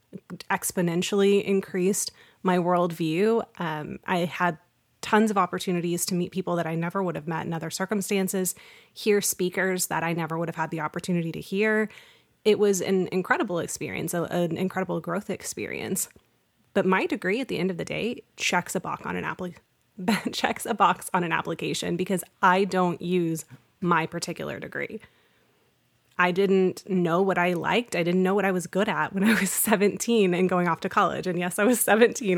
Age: 30-49